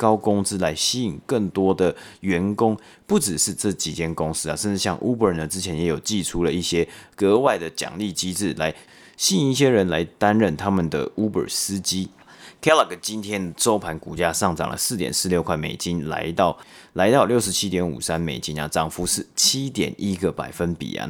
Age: 30-49